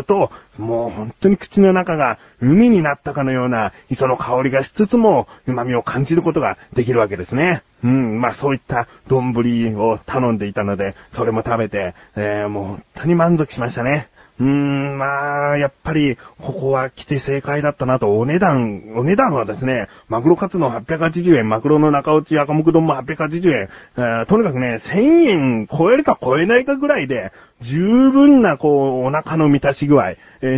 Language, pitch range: Japanese, 125-185 Hz